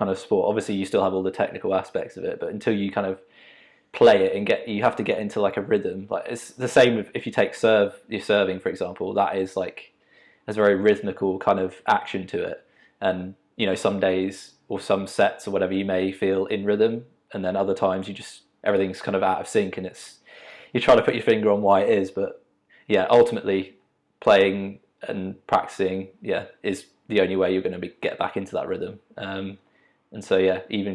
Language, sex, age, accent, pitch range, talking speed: English, male, 20-39, British, 95-130 Hz, 230 wpm